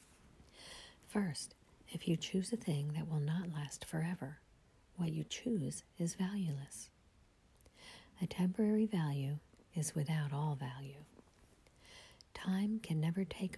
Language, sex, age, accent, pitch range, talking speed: English, female, 50-69, American, 150-185 Hz, 120 wpm